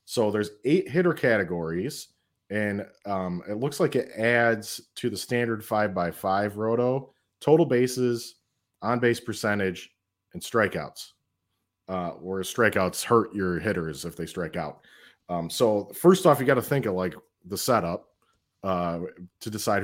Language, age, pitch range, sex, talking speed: English, 30-49, 100-130 Hz, male, 155 wpm